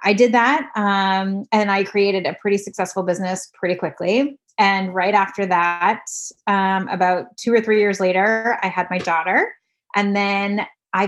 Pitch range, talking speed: 185-235 Hz, 170 wpm